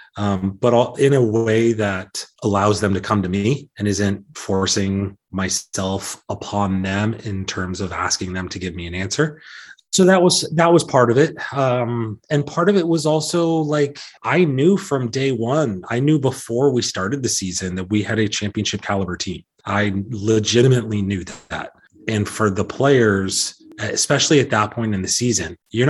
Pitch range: 100-120 Hz